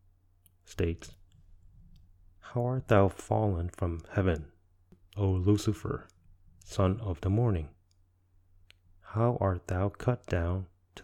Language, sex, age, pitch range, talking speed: English, male, 30-49, 90-95 Hz, 105 wpm